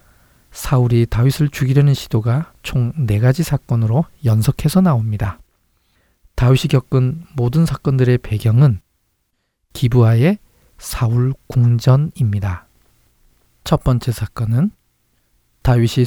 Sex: male